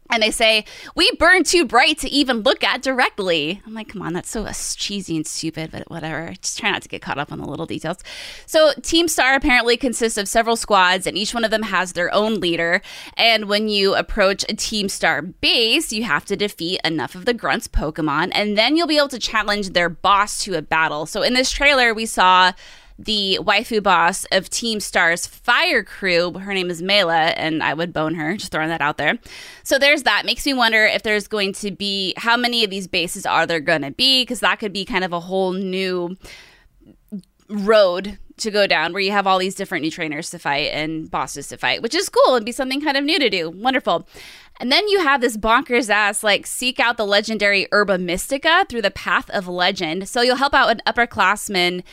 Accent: American